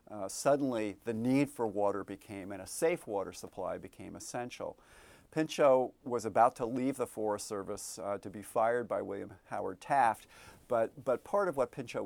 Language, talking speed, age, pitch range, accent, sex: English, 180 wpm, 50-69, 105-140 Hz, American, male